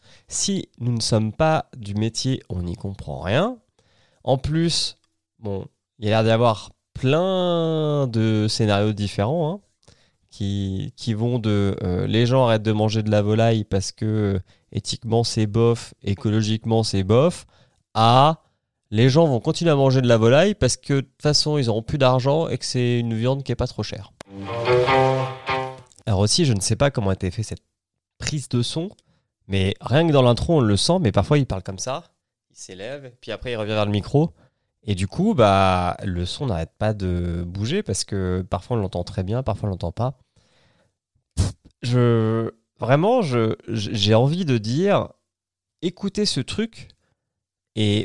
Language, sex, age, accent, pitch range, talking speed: French, male, 20-39, French, 105-135 Hz, 190 wpm